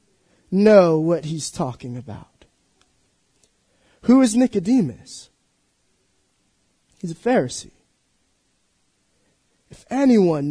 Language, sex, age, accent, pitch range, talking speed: English, male, 30-49, American, 155-210 Hz, 75 wpm